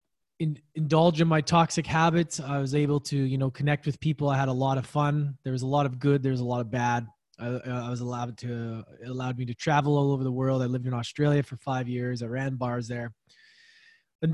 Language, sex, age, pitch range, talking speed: English, male, 20-39, 125-155 Hz, 245 wpm